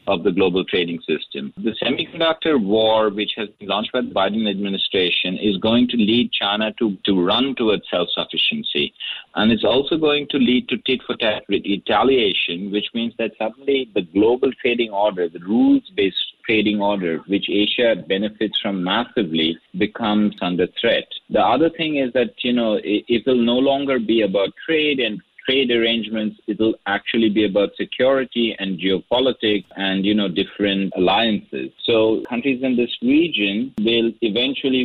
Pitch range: 100-125 Hz